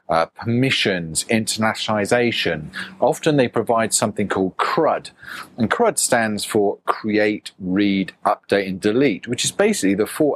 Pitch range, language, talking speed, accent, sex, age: 95-120 Hz, English, 135 wpm, British, male, 40-59